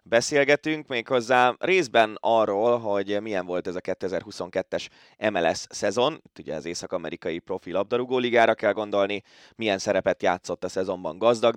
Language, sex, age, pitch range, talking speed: Hungarian, male, 20-39, 90-110 Hz, 135 wpm